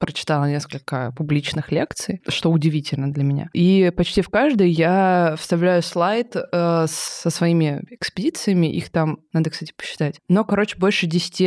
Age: 20-39